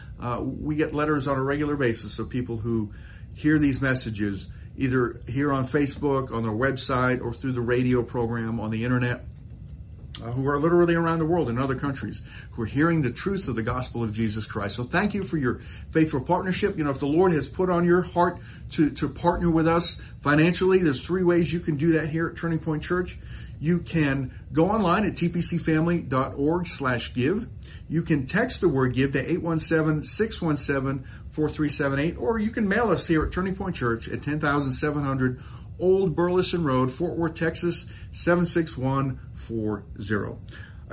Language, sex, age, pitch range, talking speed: English, male, 50-69, 125-170 Hz, 195 wpm